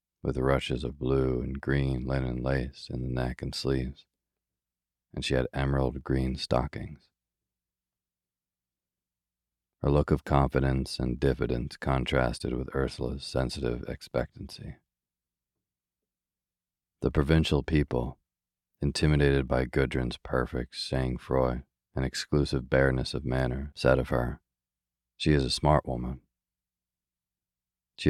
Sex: male